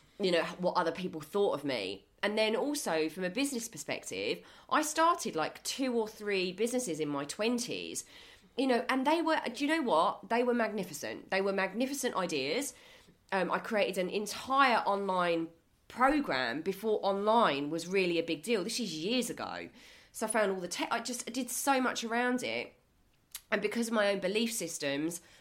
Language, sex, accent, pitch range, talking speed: English, female, British, 175-235 Hz, 185 wpm